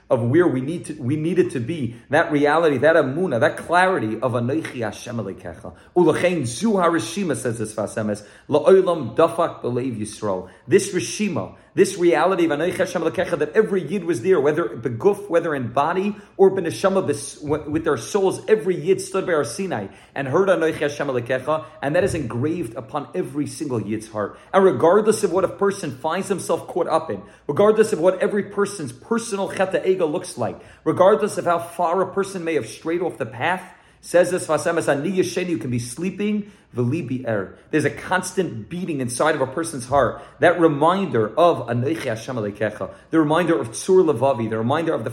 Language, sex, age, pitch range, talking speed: English, male, 40-59, 125-185 Hz, 160 wpm